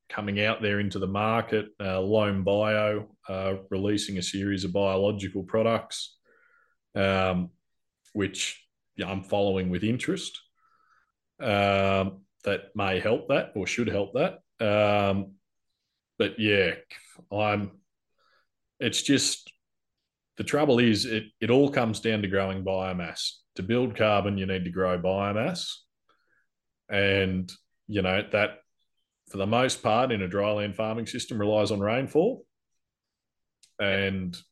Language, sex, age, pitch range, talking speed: English, male, 20-39, 95-110 Hz, 130 wpm